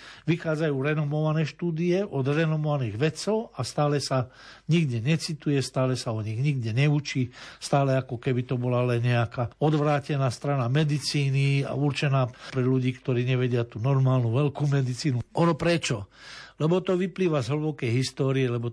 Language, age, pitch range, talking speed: Slovak, 60-79, 125-155 Hz, 145 wpm